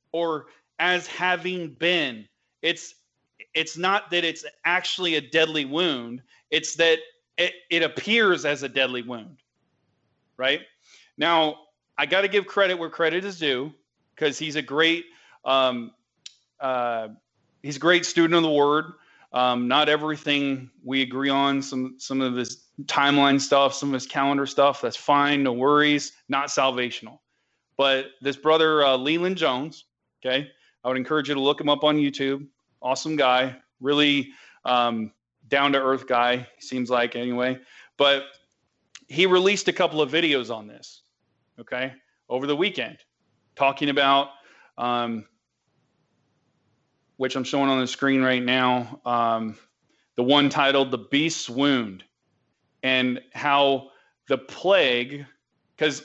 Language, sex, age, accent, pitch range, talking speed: English, male, 30-49, American, 130-160 Hz, 140 wpm